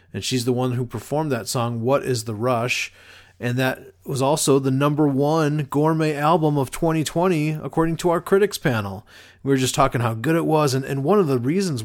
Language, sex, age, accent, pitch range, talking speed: English, male, 30-49, American, 115-145 Hz, 215 wpm